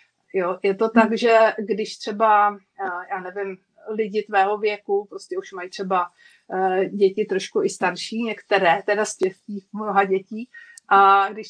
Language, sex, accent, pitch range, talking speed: Czech, female, native, 195-225 Hz, 140 wpm